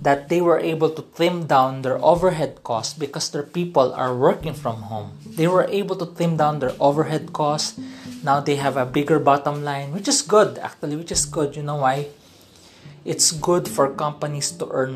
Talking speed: 195 wpm